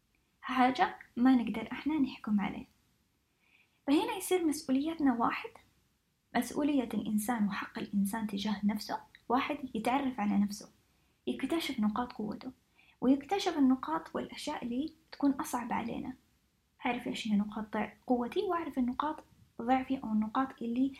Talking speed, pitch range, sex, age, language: 115 wpm, 220-290 Hz, female, 20-39, English